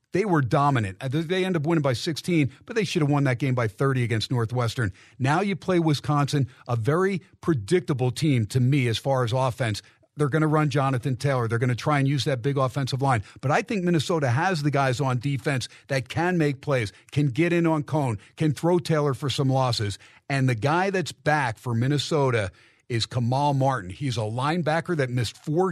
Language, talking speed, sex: English, 210 wpm, male